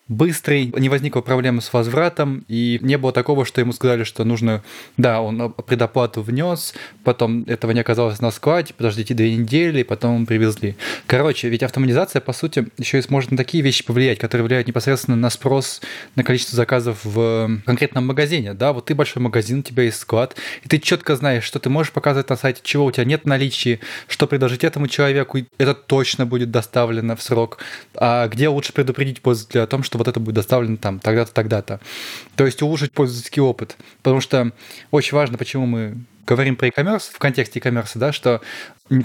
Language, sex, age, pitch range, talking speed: Russian, male, 20-39, 115-140 Hz, 190 wpm